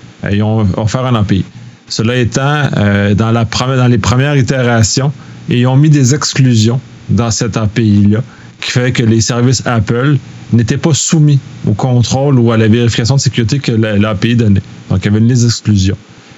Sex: male